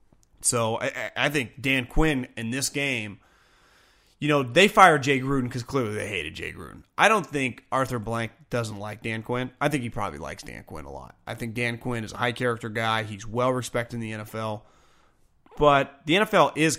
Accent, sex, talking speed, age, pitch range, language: American, male, 200 wpm, 30-49, 120-165 Hz, English